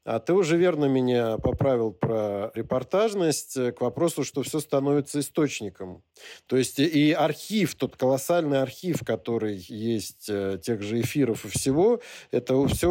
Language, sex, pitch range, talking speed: Russian, male, 115-155 Hz, 145 wpm